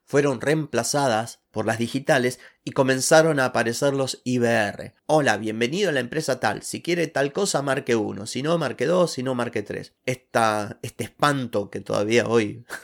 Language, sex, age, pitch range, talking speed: Spanish, male, 30-49, 115-150 Hz, 170 wpm